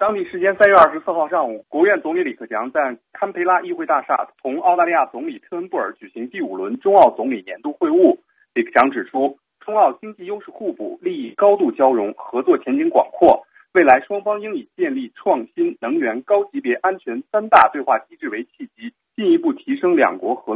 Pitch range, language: 230-350 Hz, Chinese